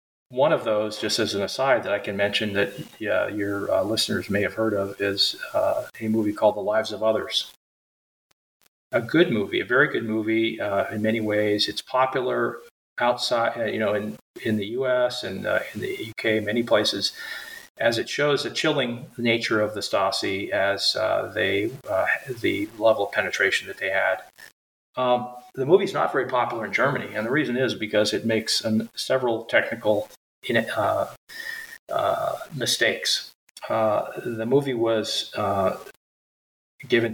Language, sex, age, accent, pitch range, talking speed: English, male, 40-59, American, 110-135 Hz, 170 wpm